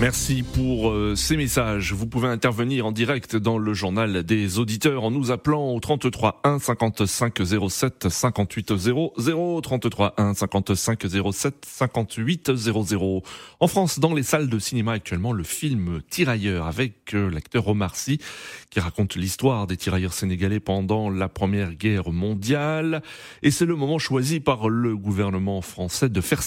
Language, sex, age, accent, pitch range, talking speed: French, male, 30-49, French, 100-135 Hz, 150 wpm